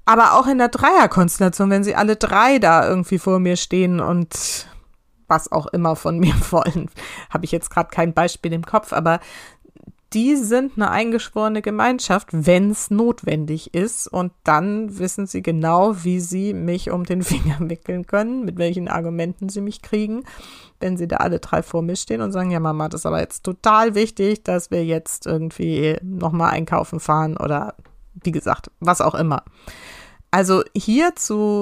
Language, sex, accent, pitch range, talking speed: German, female, German, 170-215 Hz, 175 wpm